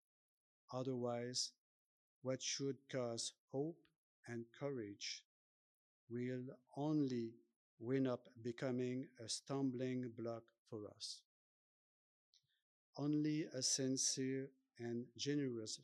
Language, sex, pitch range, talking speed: English, male, 115-135 Hz, 85 wpm